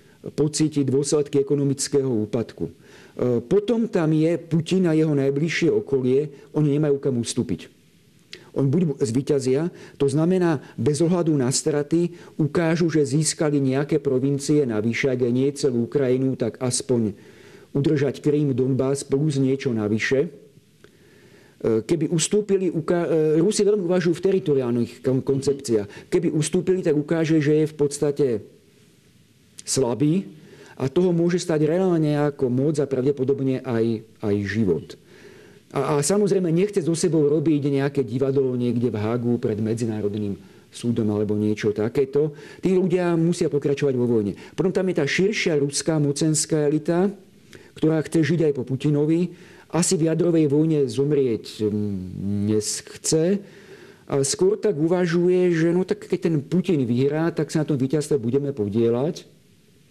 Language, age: Slovak, 50-69